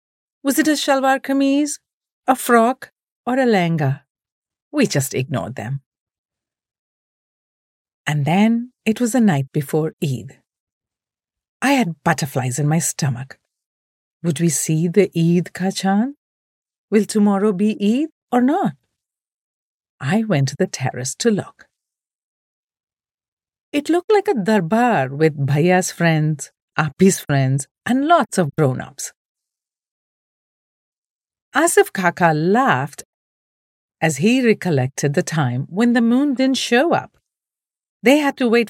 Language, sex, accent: English, female, Indian